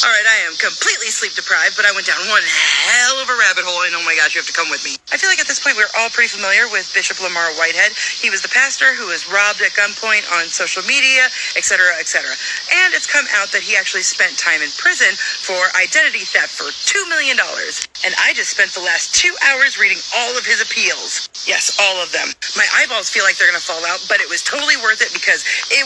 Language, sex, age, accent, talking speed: English, female, 30-49, American, 245 wpm